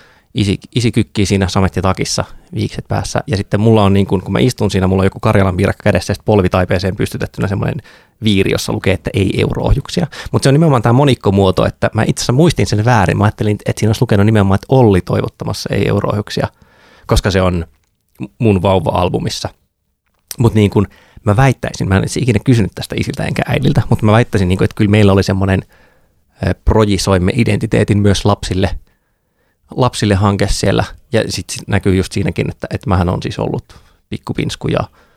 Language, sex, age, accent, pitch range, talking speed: Finnish, male, 20-39, native, 95-110 Hz, 175 wpm